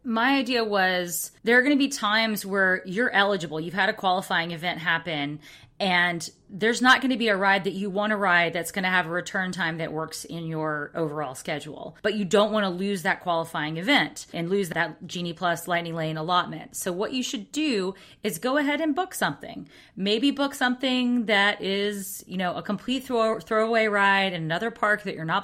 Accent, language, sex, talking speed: American, English, female, 210 wpm